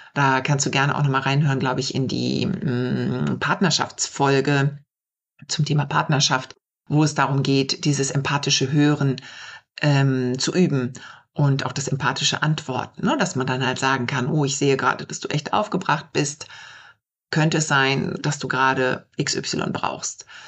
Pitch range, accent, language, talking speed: 135-185 Hz, German, German, 160 wpm